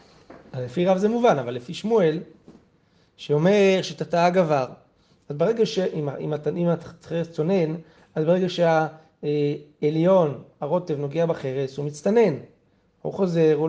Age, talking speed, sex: 30-49, 125 wpm, male